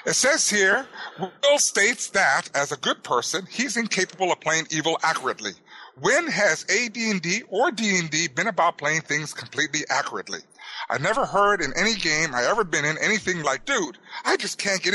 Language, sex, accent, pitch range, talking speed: English, male, American, 150-205 Hz, 195 wpm